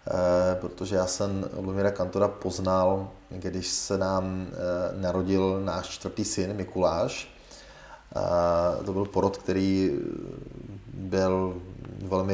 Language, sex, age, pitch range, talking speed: Czech, male, 30-49, 95-100 Hz, 110 wpm